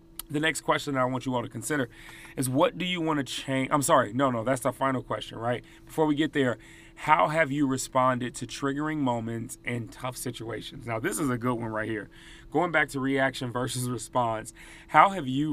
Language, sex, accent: English, male, American